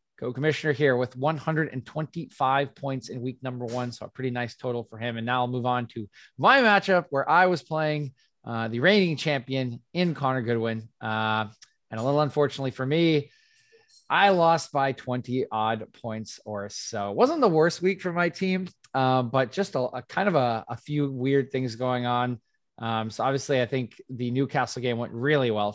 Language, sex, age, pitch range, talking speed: English, male, 20-39, 115-140 Hz, 195 wpm